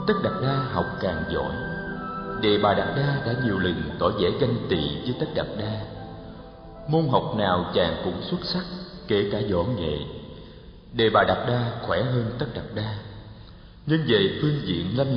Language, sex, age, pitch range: Vietnamese, male, 50-69, 100-150 Hz